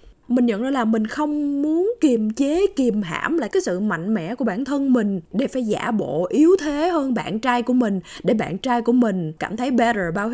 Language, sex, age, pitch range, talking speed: Vietnamese, female, 20-39, 205-275 Hz, 230 wpm